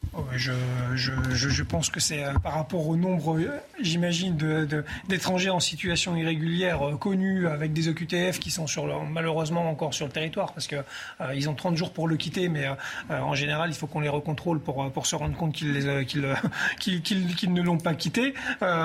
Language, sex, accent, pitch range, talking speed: French, male, French, 150-175 Hz, 210 wpm